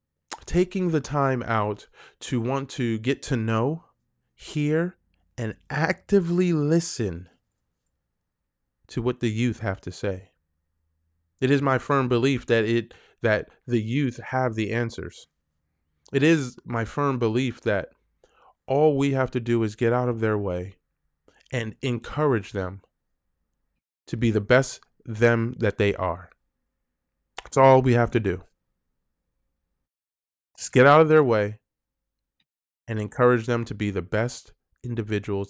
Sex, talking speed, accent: male, 135 wpm, American